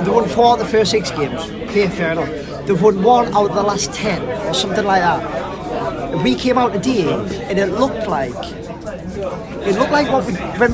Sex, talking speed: male, 210 wpm